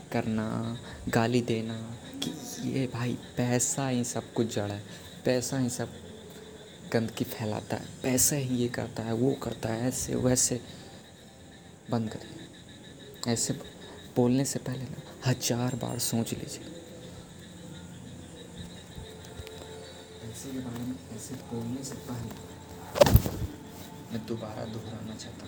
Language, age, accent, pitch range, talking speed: Hindi, 20-39, native, 110-130 Hz, 120 wpm